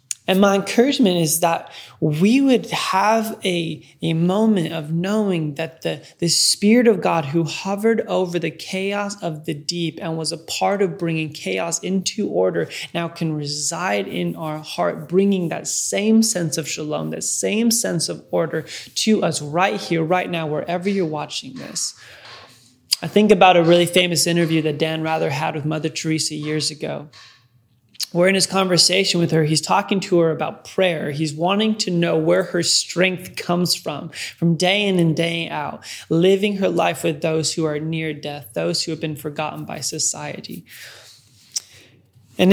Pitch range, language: 155-190 Hz, English